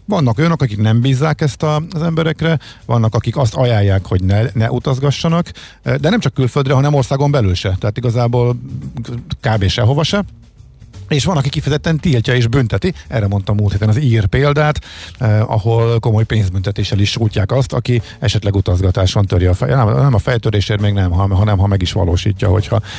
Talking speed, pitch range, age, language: 180 wpm, 100-140 Hz, 50-69, Hungarian